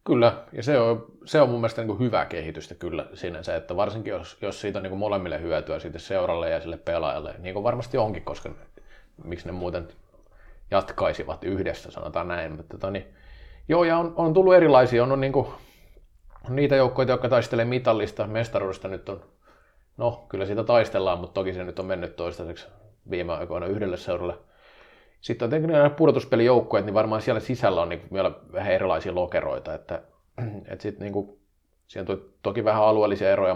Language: Finnish